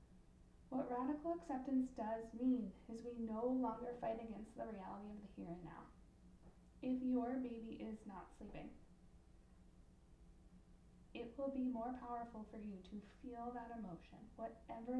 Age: 10-29